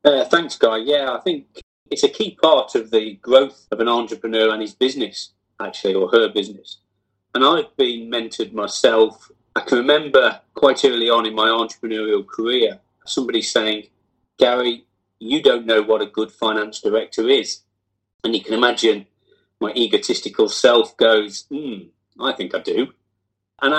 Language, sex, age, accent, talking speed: English, male, 30-49, British, 160 wpm